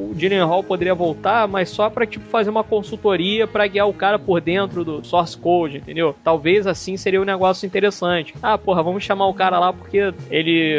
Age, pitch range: 20-39, 160-200 Hz